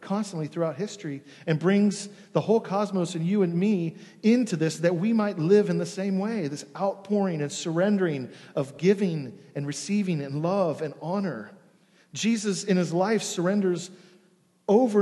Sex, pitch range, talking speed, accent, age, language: male, 155-200 Hz, 160 wpm, American, 40-59, English